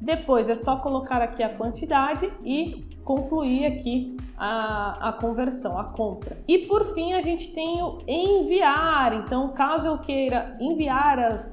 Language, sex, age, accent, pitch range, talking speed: Portuguese, female, 20-39, Brazilian, 245-310 Hz, 150 wpm